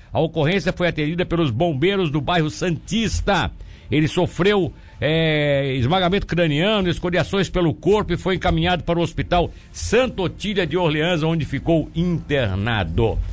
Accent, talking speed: Brazilian, 130 wpm